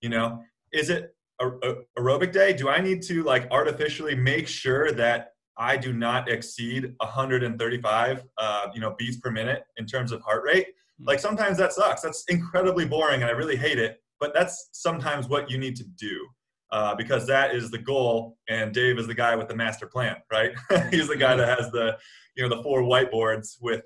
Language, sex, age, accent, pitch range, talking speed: English, male, 20-39, American, 110-135 Hz, 200 wpm